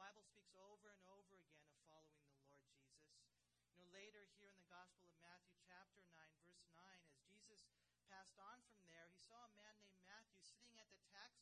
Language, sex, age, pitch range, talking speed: English, male, 40-59, 155-210 Hz, 215 wpm